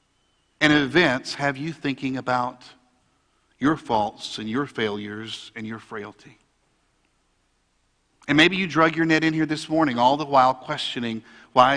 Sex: male